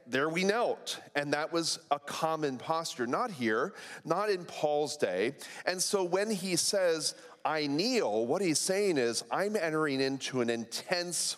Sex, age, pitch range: male, 40-59, 130-185 Hz